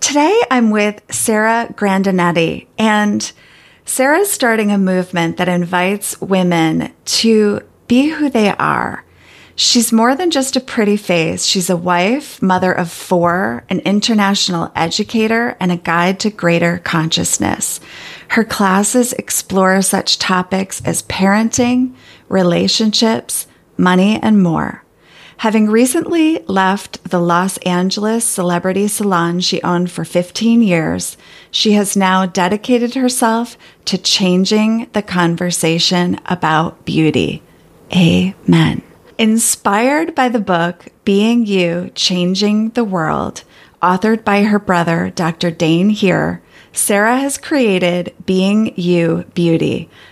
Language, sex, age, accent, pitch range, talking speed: English, female, 30-49, American, 175-225 Hz, 120 wpm